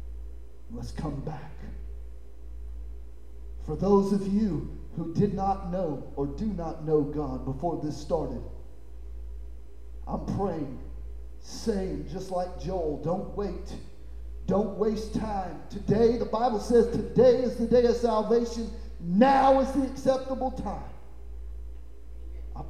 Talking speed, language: 120 wpm, English